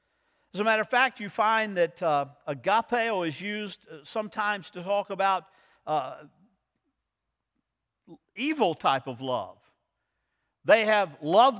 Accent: American